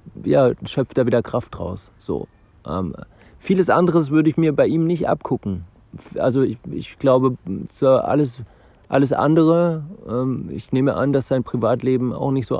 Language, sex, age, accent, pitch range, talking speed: German, male, 40-59, German, 110-130 Hz, 160 wpm